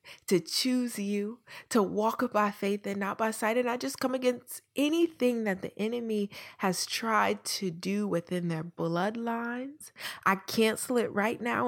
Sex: female